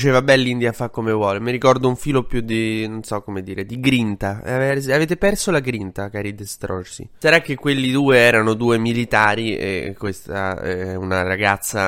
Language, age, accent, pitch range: Italian, 20-39, native, 105-135 Hz